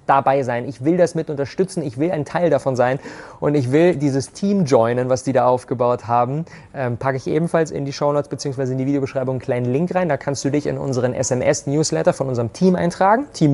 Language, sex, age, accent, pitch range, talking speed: German, male, 30-49, German, 125-155 Hz, 235 wpm